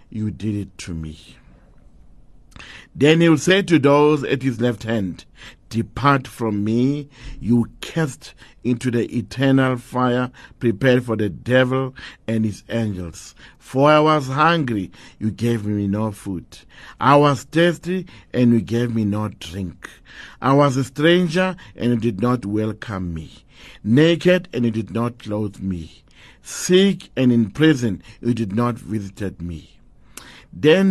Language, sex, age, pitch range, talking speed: English, male, 50-69, 105-140 Hz, 150 wpm